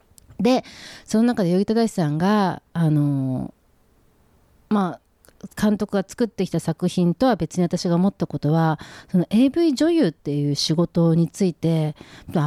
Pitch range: 160-230 Hz